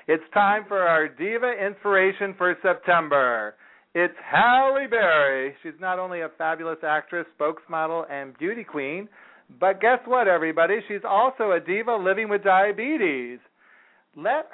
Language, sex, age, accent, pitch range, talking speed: English, male, 40-59, American, 135-180 Hz, 135 wpm